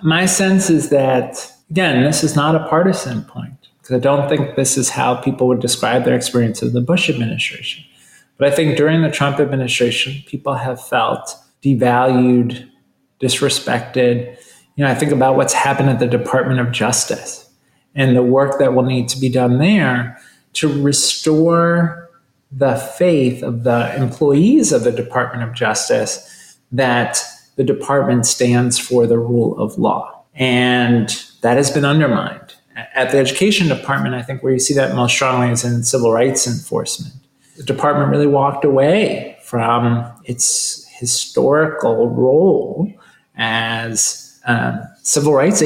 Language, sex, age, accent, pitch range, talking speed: English, male, 30-49, American, 120-145 Hz, 155 wpm